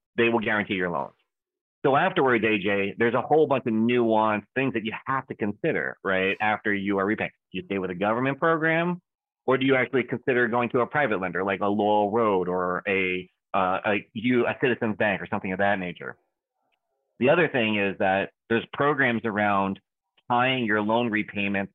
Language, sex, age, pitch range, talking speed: English, male, 30-49, 100-120 Hz, 195 wpm